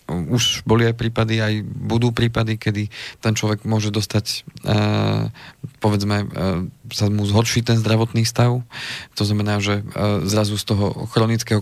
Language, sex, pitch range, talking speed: Slovak, male, 105-115 Hz, 150 wpm